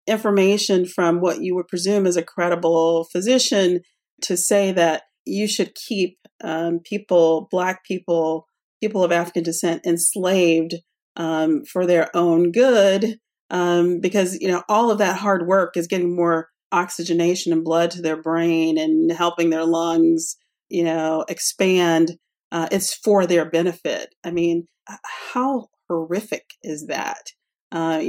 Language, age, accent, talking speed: English, 40-59, American, 145 wpm